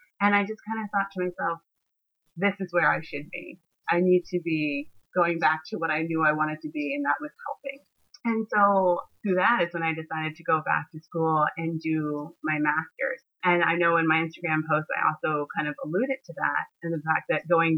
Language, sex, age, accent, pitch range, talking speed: English, female, 30-49, American, 155-180 Hz, 230 wpm